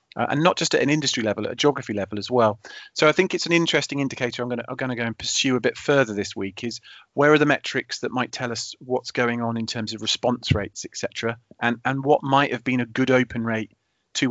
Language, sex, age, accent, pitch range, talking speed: English, male, 40-59, British, 110-130 Hz, 260 wpm